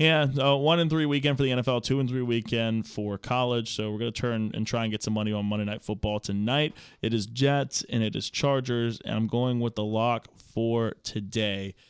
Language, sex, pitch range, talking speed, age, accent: English, male, 105-120 Hz, 220 wpm, 20-39, American